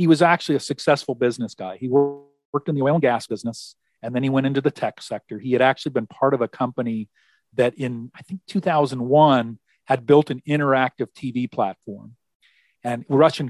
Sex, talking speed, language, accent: male, 195 wpm, English, American